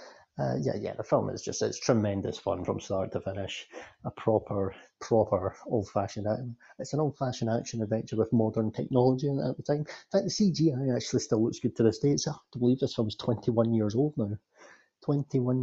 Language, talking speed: English, 205 wpm